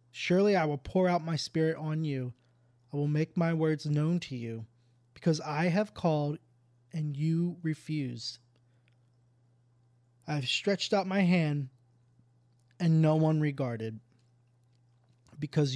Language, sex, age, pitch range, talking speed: English, male, 20-39, 120-160 Hz, 135 wpm